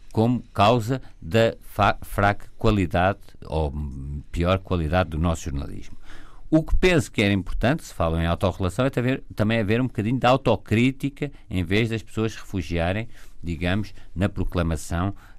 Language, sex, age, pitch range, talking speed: Portuguese, male, 50-69, 95-120 Hz, 145 wpm